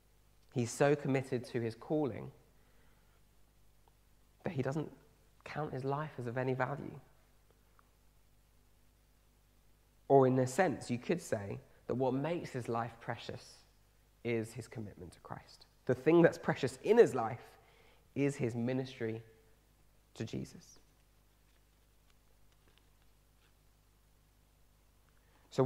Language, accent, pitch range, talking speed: English, British, 95-125 Hz, 110 wpm